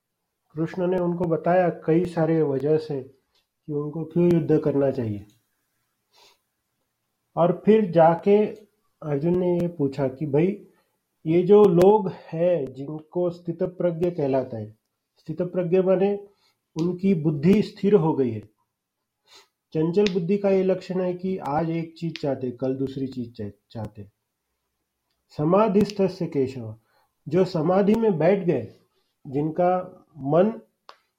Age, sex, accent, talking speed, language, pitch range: 40-59, male, Indian, 110 wpm, English, 140-190 Hz